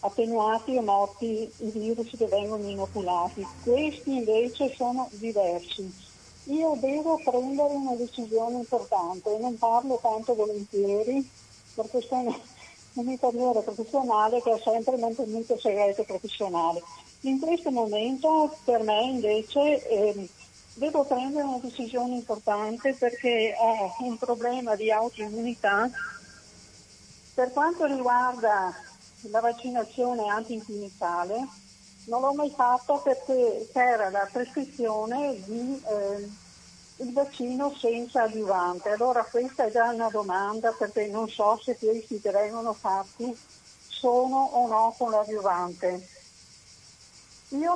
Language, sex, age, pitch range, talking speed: Italian, female, 50-69, 215-255 Hz, 115 wpm